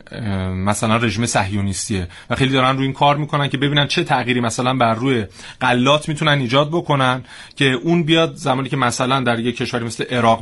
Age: 30-49